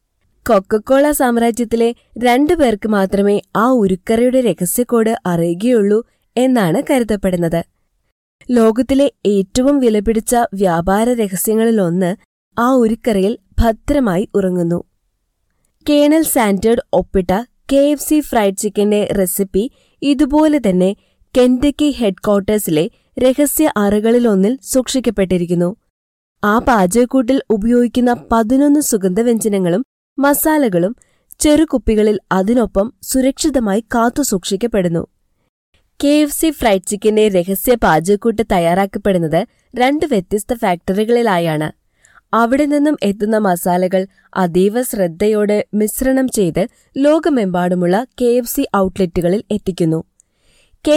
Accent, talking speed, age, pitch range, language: native, 85 wpm, 20-39, 195-255 Hz, Malayalam